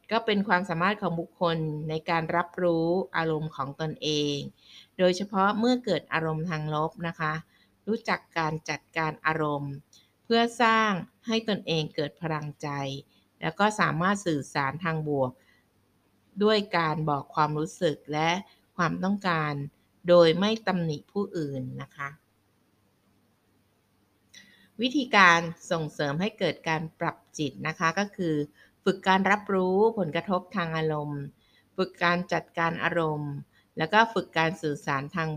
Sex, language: female, Thai